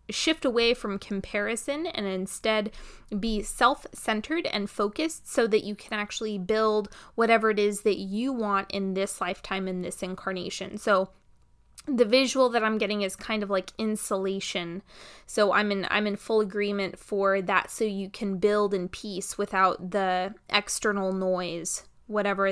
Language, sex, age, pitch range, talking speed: English, female, 20-39, 195-230 Hz, 155 wpm